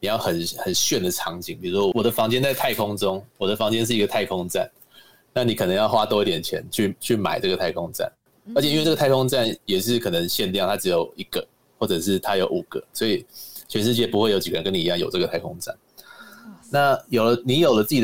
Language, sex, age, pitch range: Chinese, male, 30-49, 105-145 Hz